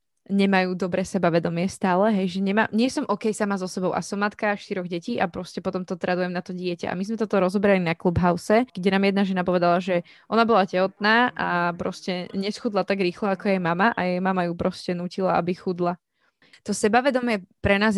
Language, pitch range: Slovak, 185-205 Hz